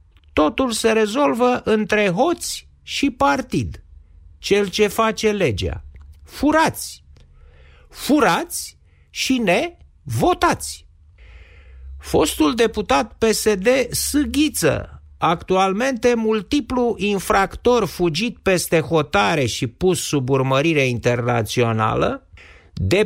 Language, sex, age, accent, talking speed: Romanian, male, 50-69, native, 85 wpm